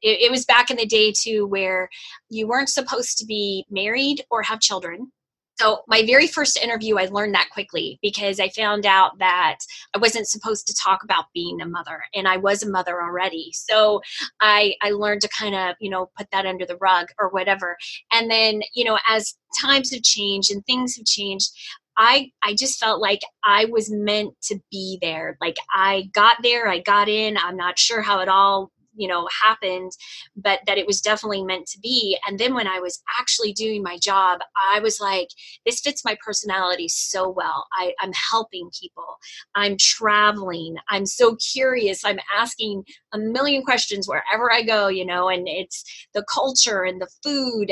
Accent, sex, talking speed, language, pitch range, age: American, female, 190 wpm, English, 190-230 Hz, 20-39